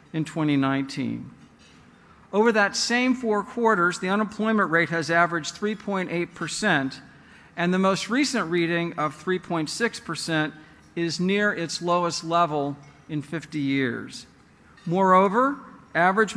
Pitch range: 160-195 Hz